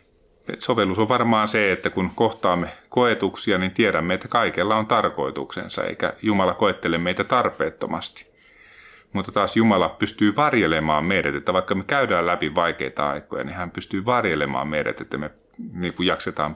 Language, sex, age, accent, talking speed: Finnish, male, 30-49, native, 145 wpm